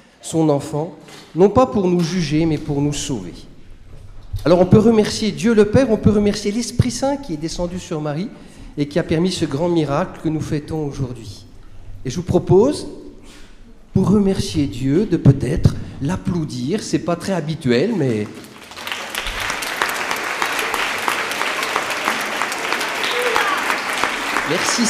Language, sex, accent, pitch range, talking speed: French, male, French, 145-205 Hz, 135 wpm